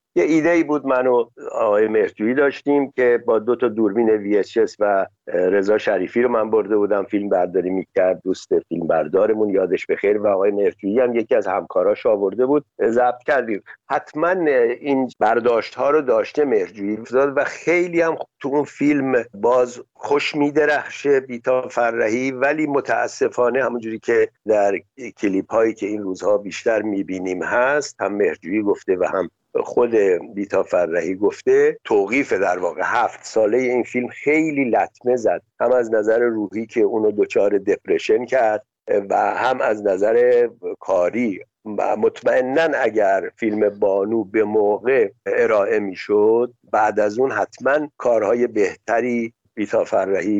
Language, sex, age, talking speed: Persian, male, 50-69, 145 wpm